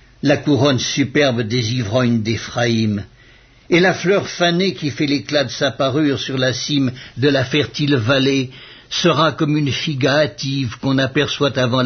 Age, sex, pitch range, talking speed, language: 60-79, male, 130-165 Hz, 155 wpm, French